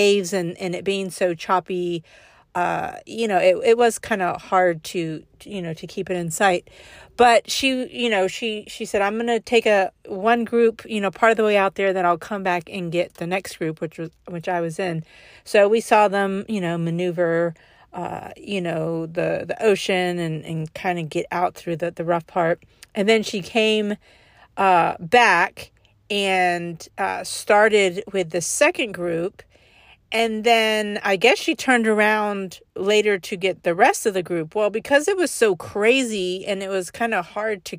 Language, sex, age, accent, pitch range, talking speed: English, female, 40-59, American, 180-235 Hz, 200 wpm